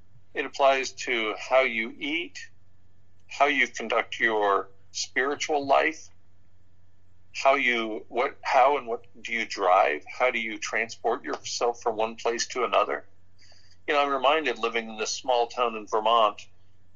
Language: English